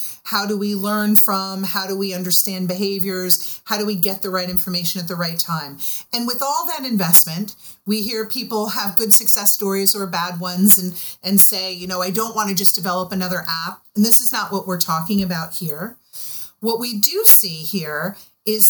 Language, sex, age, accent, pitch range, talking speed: English, female, 40-59, American, 185-225 Hz, 205 wpm